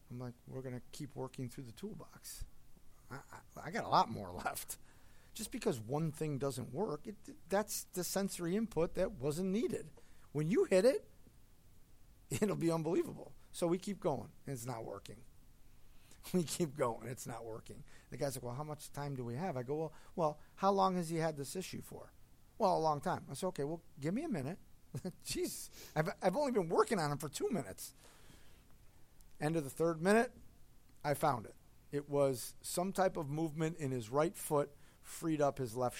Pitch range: 135-185 Hz